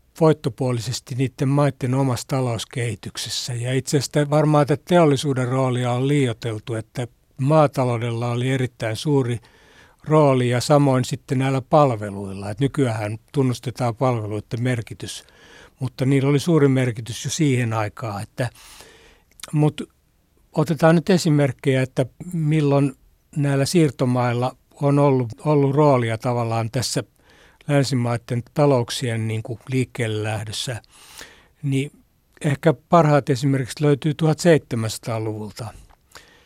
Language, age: Finnish, 60-79